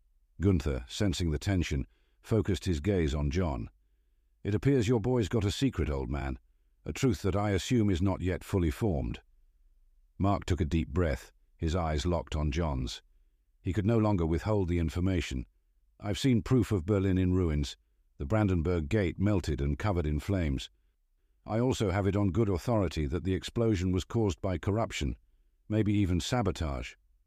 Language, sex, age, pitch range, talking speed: English, male, 50-69, 75-100 Hz, 170 wpm